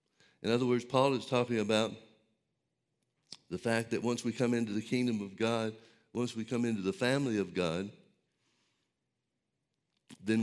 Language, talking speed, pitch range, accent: English, 155 wpm, 115-125 Hz, American